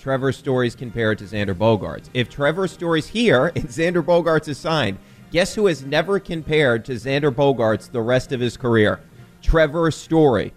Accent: American